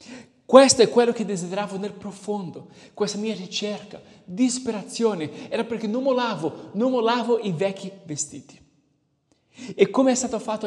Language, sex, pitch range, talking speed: Italian, male, 165-215 Hz, 145 wpm